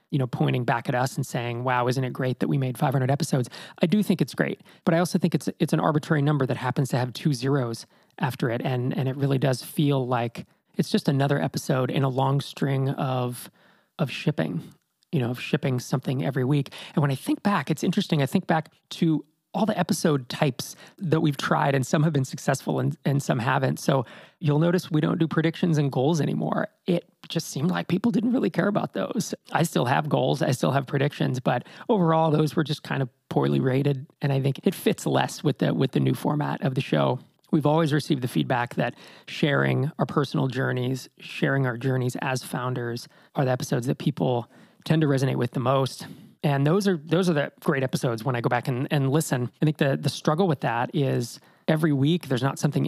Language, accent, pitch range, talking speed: English, American, 135-165 Hz, 225 wpm